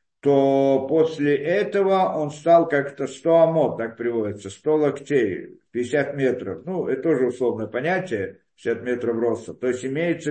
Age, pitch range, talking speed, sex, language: 50-69, 120-165 Hz, 145 wpm, male, Russian